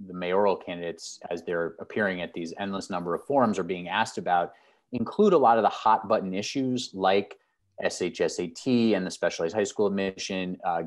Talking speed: 180 wpm